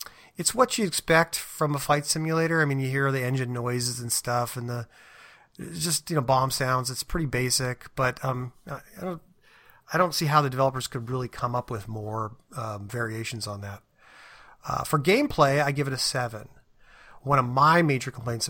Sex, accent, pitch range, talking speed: male, American, 120-145 Hz, 195 wpm